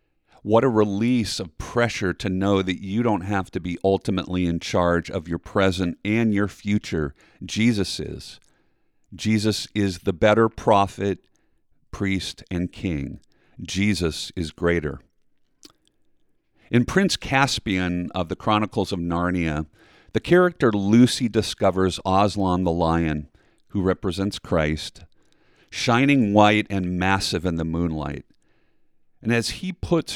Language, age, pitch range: English, 50-69, 85-110 Hz